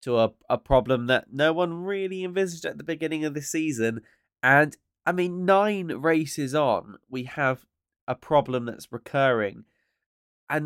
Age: 20-39